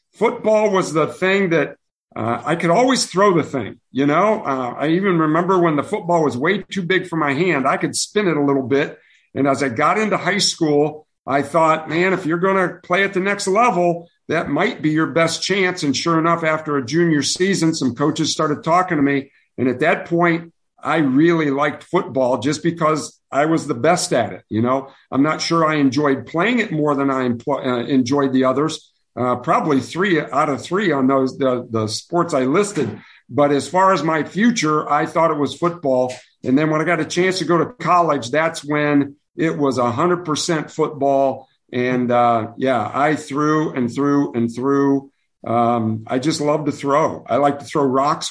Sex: male